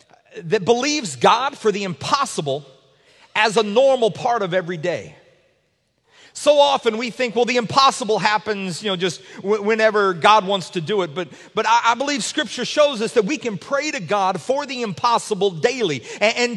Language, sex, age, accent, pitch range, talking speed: English, male, 40-59, American, 185-245 Hz, 185 wpm